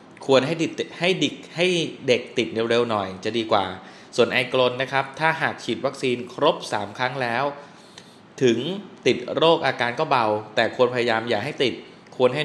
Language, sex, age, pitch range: Thai, male, 20-39, 115-145 Hz